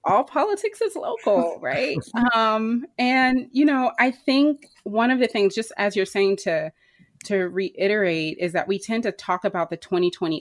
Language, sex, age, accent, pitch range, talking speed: English, female, 30-49, American, 170-215 Hz, 180 wpm